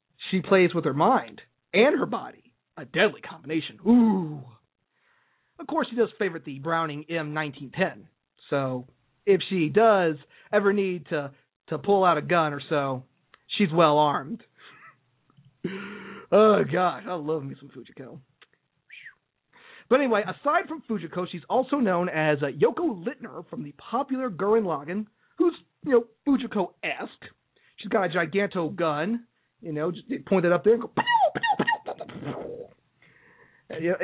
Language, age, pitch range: English, 40-59, 150-210 Hz